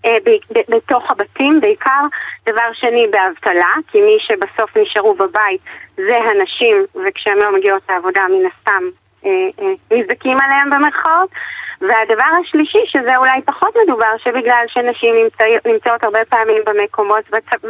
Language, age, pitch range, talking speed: Hebrew, 20-39, 215-320 Hz, 140 wpm